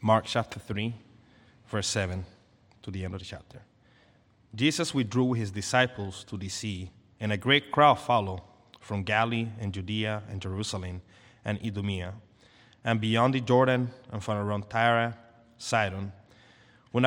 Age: 30-49